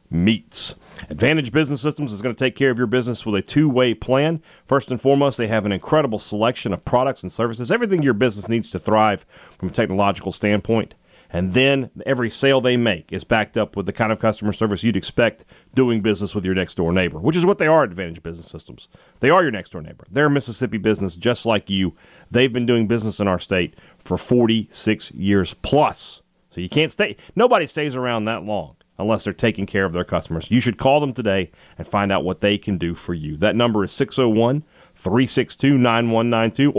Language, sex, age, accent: English, male, 40-59, American